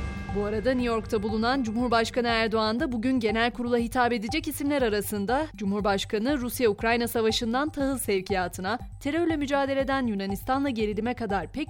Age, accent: 30-49, native